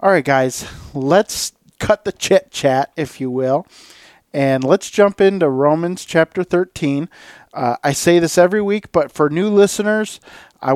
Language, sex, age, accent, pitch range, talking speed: English, male, 40-59, American, 135-170 Hz, 155 wpm